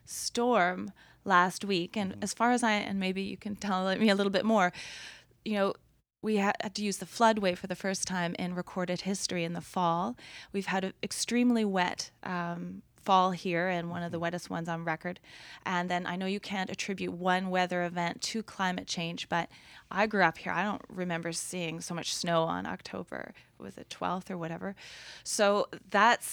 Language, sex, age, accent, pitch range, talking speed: English, female, 20-39, American, 175-200 Hz, 200 wpm